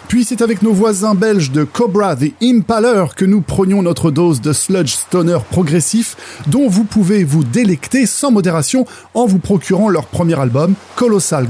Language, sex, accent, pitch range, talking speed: French, male, French, 155-220 Hz, 170 wpm